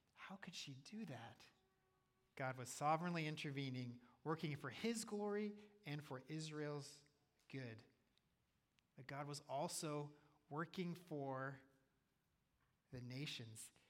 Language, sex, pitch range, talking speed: English, male, 130-160 Hz, 110 wpm